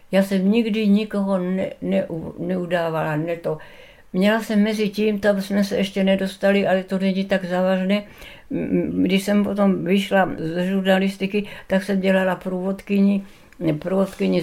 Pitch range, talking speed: 160-195 Hz, 135 wpm